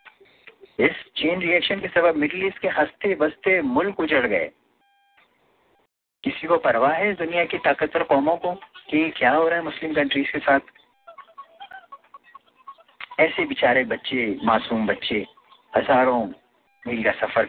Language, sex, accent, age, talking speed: English, male, Indian, 50-69, 135 wpm